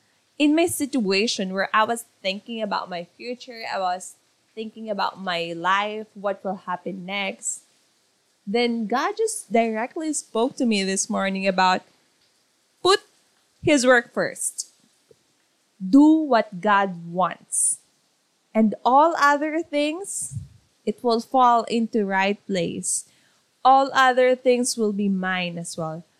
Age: 20-39